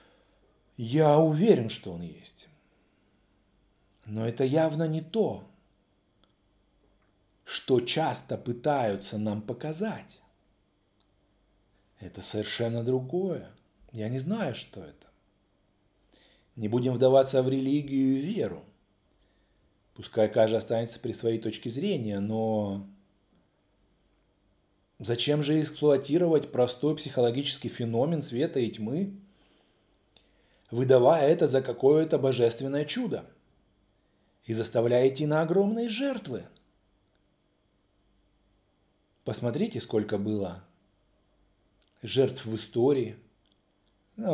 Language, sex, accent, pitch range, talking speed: Russian, male, native, 100-135 Hz, 90 wpm